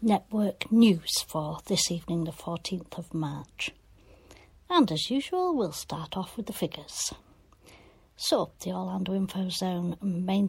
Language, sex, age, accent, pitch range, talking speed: English, female, 60-79, British, 180-260 Hz, 135 wpm